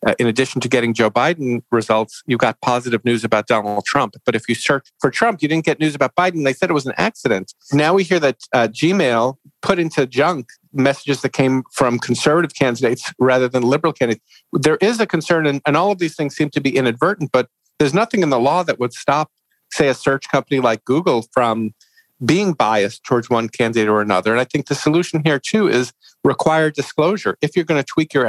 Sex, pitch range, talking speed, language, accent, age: male, 120-155 Hz, 220 wpm, English, American, 50-69